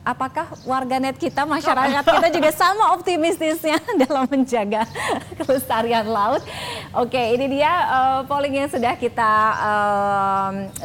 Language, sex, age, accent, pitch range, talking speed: Indonesian, female, 20-39, native, 215-265 Hz, 120 wpm